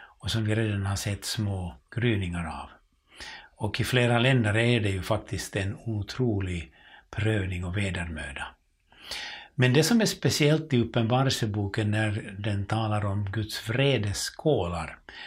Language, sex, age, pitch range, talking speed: Swedish, male, 60-79, 100-125 Hz, 140 wpm